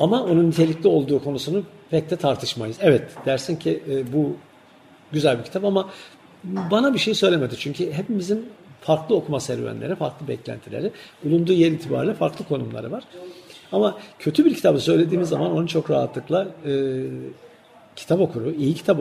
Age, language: 50-69, Turkish